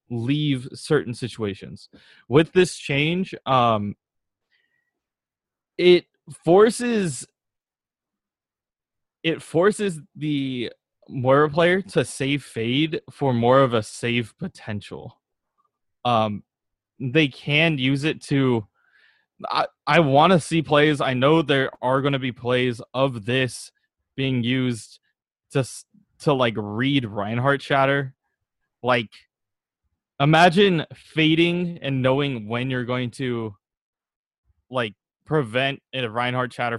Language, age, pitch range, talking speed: English, 20-39, 115-145 Hz, 110 wpm